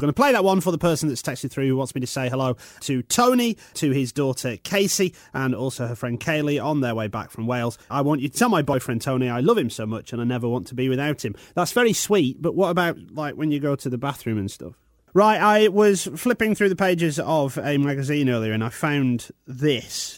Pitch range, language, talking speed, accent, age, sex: 125-195 Hz, English, 250 wpm, British, 30-49, male